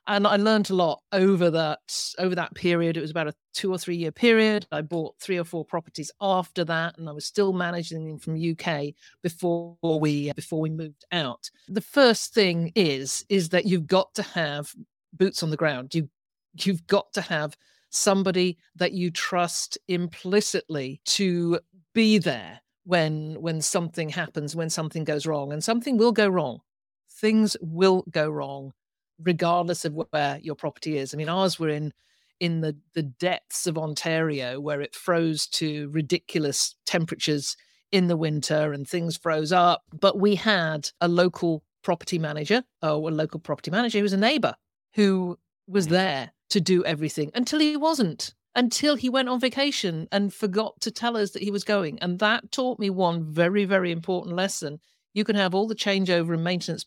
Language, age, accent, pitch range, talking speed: English, 50-69, British, 160-195 Hz, 180 wpm